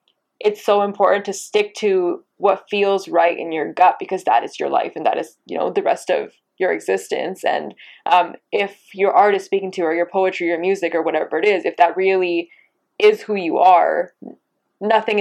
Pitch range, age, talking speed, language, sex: 175-210 Hz, 10-29, 215 wpm, English, female